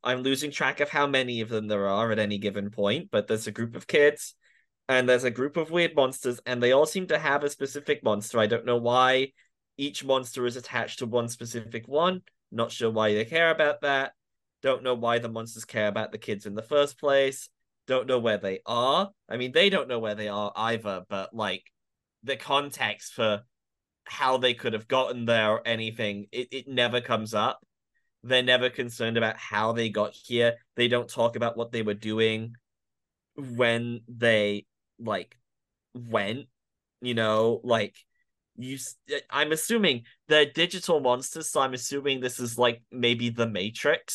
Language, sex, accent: English, male, British